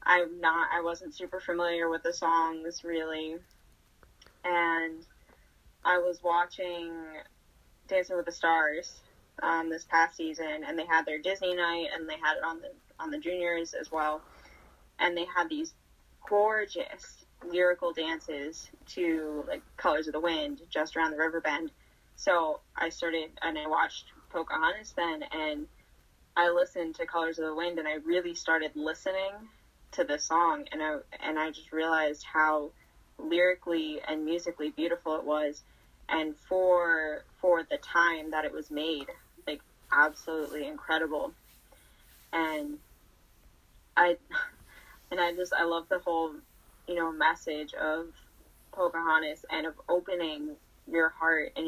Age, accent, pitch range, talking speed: 10-29, American, 155-180 Hz, 145 wpm